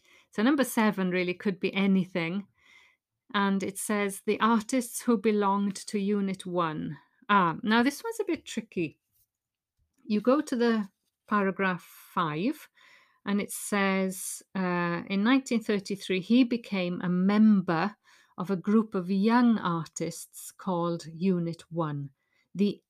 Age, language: 50-69, English